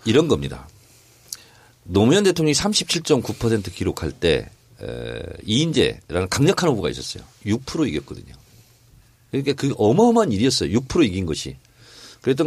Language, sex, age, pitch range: Korean, male, 40-59, 105-150 Hz